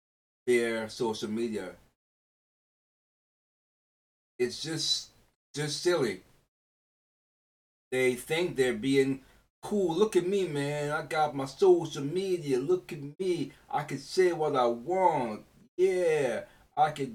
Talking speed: 115 wpm